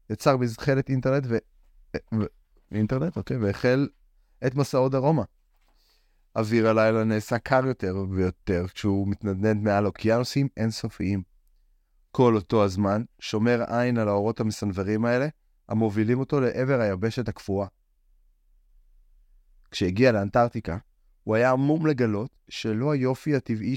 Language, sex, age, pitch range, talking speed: Hebrew, male, 30-49, 100-130 Hz, 115 wpm